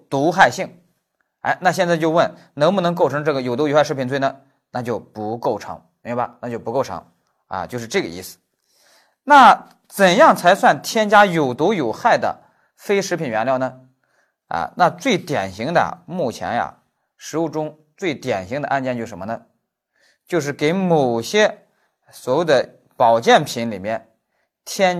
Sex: male